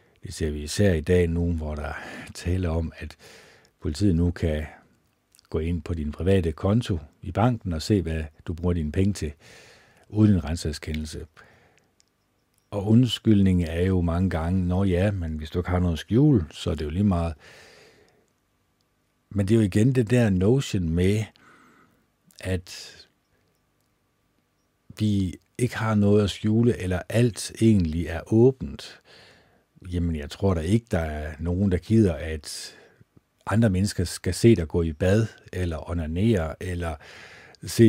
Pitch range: 85-105 Hz